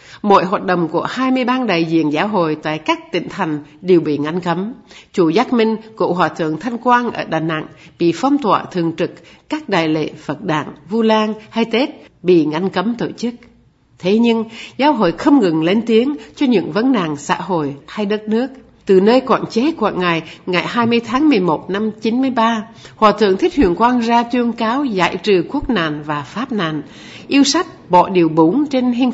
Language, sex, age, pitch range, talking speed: Vietnamese, female, 60-79, 165-235 Hz, 215 wpm